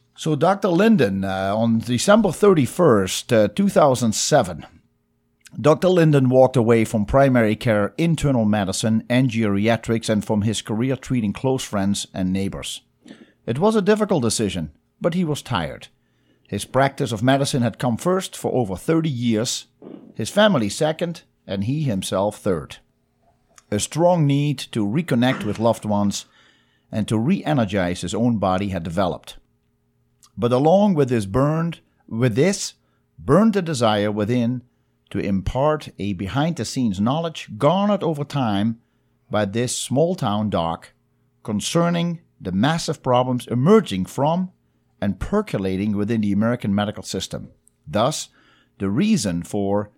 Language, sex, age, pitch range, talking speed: English, male, 50-69, 100-150 Hz, 135 wpm